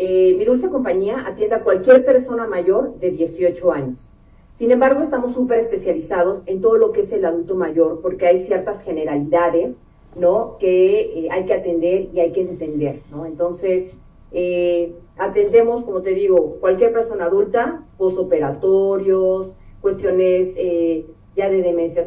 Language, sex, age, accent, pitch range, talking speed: Spanish, female, 40-59, Mexican, 175-220 Hz, 150 wpm